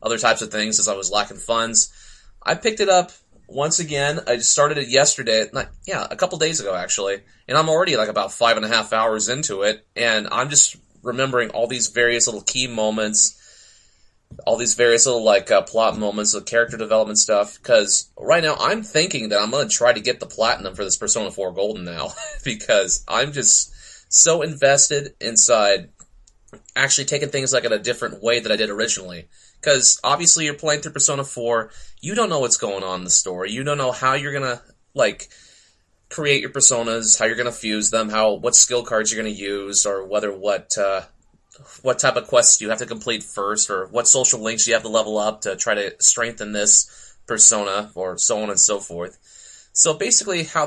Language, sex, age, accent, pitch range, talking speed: English, male, 30-49, American, 105-140 Hz, 205 wpm